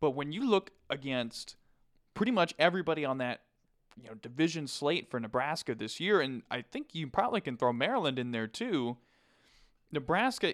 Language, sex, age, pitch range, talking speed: English, male, 20-39, 120-160 Hz, 170 wpm